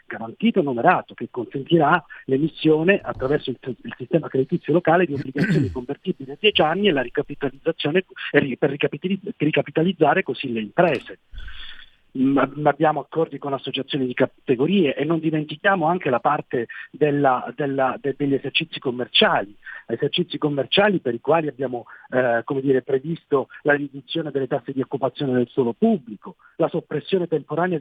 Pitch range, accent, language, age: 135-180 Hz, native, Italian, 50-69